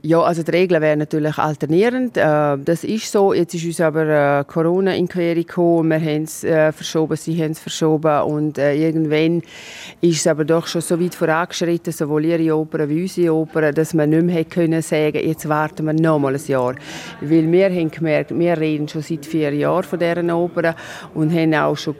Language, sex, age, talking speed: German, female, 40-59, 205 wpm